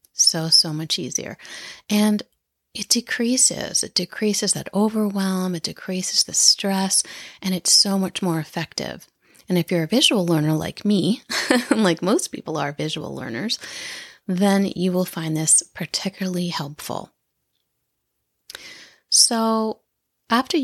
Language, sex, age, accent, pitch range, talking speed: English, female, 30-49, American, 175-230 Hz, 130 wpm